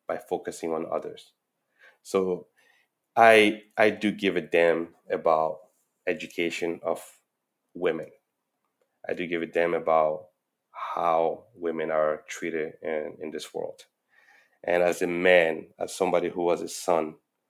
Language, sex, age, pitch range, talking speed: English, male, 30-49, 80-100 Hz, 135 wpm